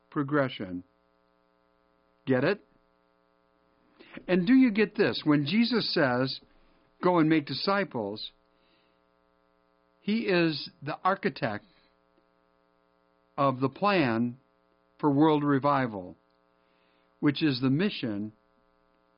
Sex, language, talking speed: male, English, 90 wpm